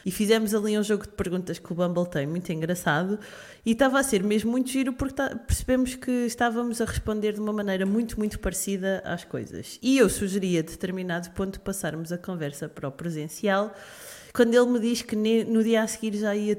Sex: female